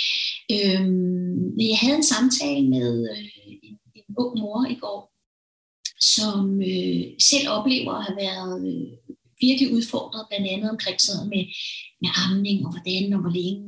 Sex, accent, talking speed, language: female, native, 150 wpm, Danish